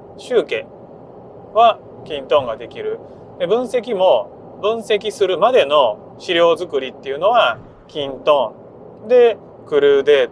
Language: Japanese